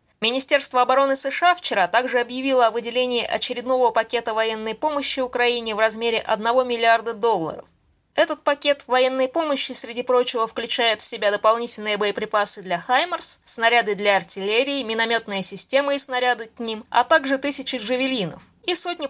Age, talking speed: 20-39, 145 wpm